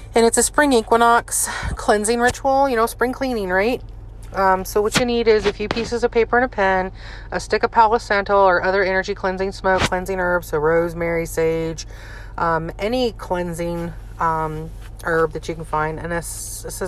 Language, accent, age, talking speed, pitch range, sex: English, American, 30-49, 185 wpm, 155-200 Hz, female